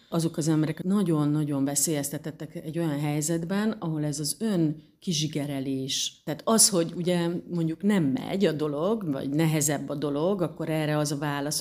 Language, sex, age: Hungarian, female, 40-59